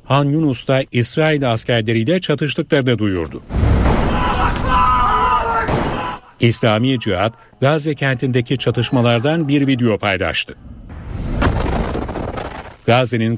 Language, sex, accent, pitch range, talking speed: Turkish, male, native, 115-135 Hz, 75 wpm